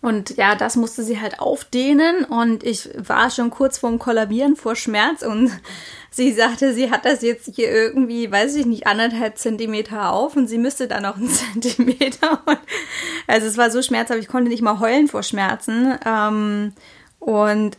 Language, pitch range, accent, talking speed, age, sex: German, 210-250 Hz, German, 175 wpm, 20-39, female